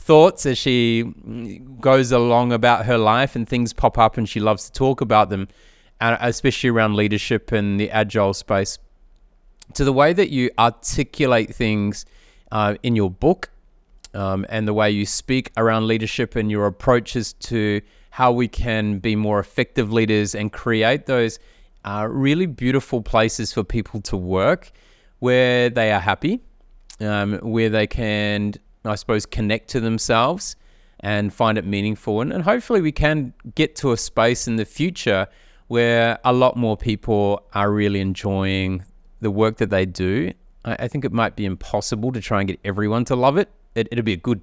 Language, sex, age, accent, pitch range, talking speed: English, male, 30-49, Australian, 105-125 Hz, 175 wpm